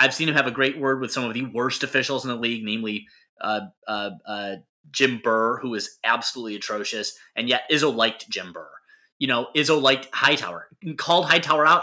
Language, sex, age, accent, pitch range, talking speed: English, male, 30-49, American, 115-160 Hz, 205 wpm